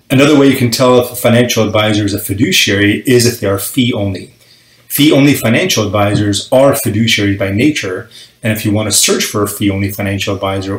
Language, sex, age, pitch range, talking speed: English, male, 30-49, 100-120 Hz, 195 wpm